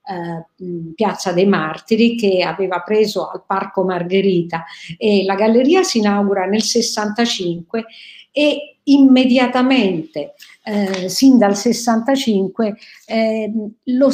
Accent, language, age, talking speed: native, Italian, 50-69, 100 wpm